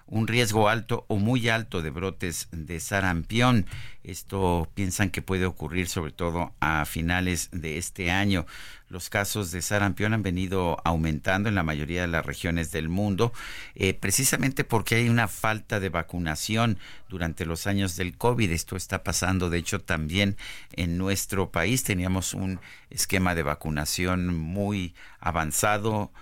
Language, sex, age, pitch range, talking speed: Spanish, male, 50-69, 85-100 Hz, 150 wpm